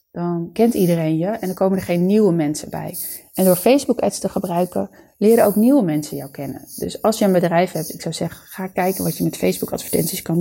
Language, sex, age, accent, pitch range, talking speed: Dutch, female, 30-49, Dutch, 165-195 Hz, 225 wpm